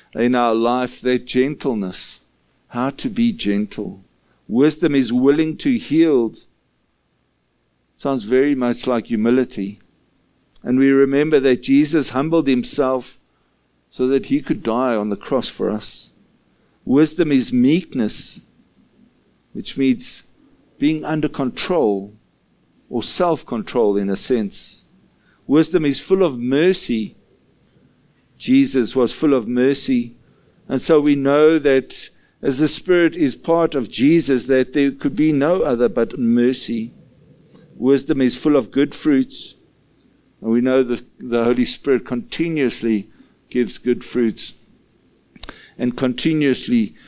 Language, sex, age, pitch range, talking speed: English, male, 50-69, 120-155 Hz, 125 wpm